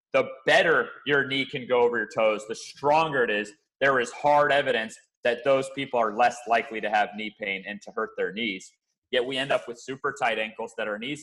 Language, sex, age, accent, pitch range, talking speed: English, male, 30-49, American, 120-150 Hz, 230 wpm